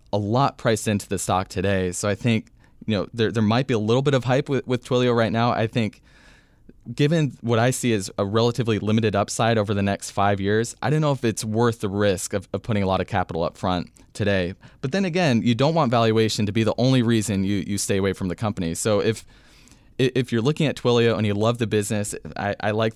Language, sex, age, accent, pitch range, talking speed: English, male, 20-39, American, 100-120 Hz, 245 wpm